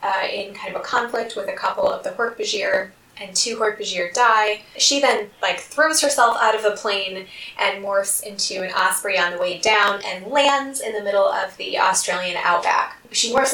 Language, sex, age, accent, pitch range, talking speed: English, female, 10-29, American, 195-270 Hz, 200 wpm